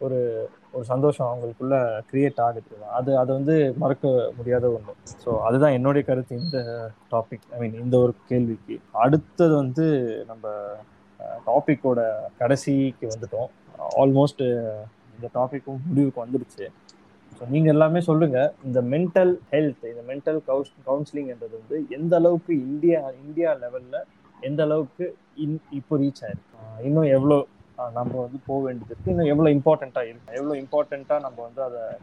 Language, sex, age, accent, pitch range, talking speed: Tamil, male, 20-39, native, 120-150 Hz, 135 wpm